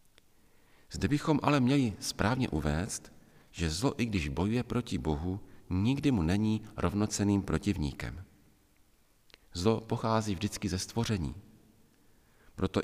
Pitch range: 90-110 Hz